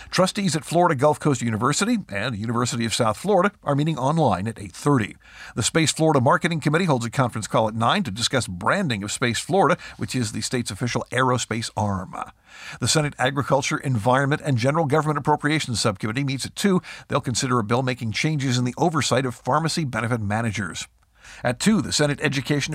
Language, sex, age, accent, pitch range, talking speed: English, male, 50-69, American, 115-150 Hz, 185 wpm